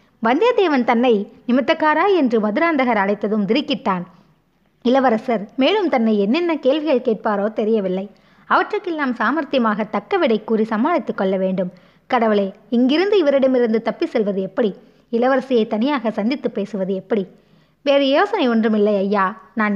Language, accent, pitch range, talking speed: Tamil, native, 205-270 Hz, 115 wpm